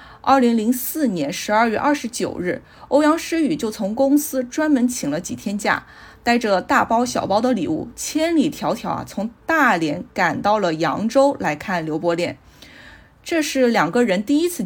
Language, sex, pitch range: Chinese, female, 210-285 Hz